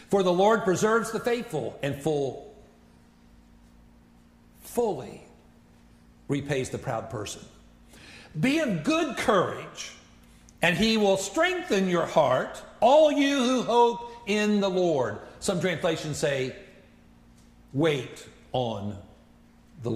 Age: 60-79